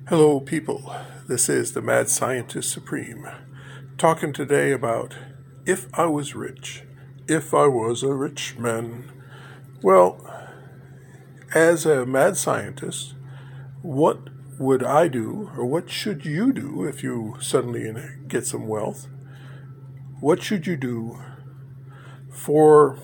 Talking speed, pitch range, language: 120 wpm, 135-145 Hz, English